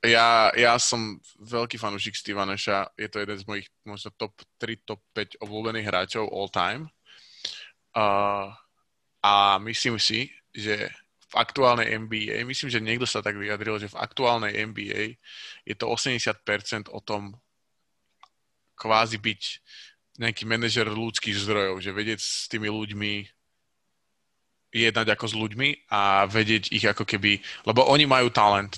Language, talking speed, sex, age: Slovak, 140 wpm, male, 20-39